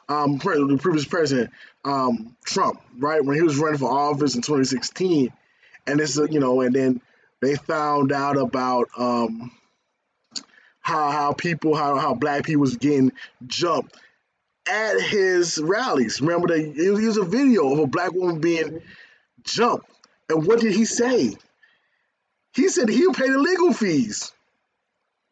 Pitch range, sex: 145-220 Hz, male